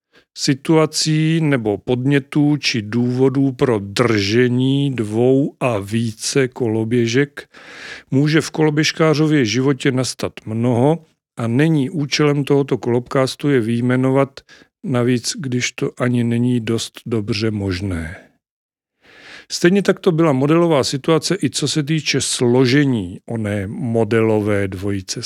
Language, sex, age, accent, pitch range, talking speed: Czech, male, 40-59, native, 120-140 Hz, 110 wpm